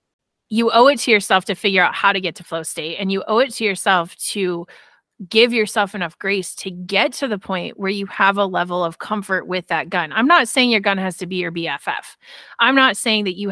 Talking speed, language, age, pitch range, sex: 245 wpm, English, 30-49, 175-210 Hz, female